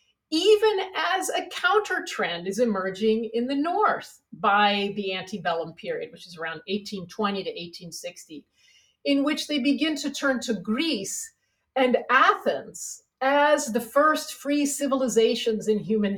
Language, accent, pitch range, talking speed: English, American, 200-275 Hz, 135 wpm